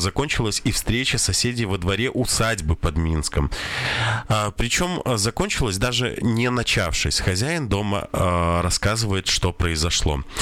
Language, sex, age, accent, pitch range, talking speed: Russian, male, 20-39, native, 95-120 Hz, 110 wpm